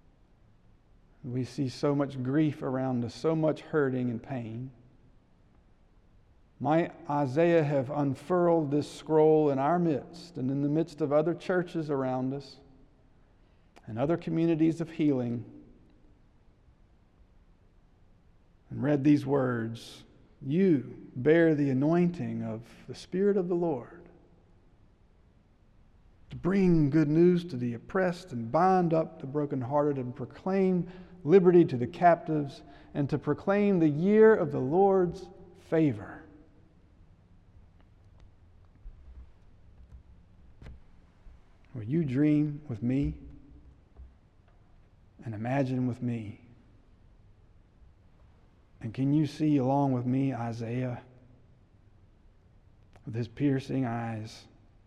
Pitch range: 100-150 Hz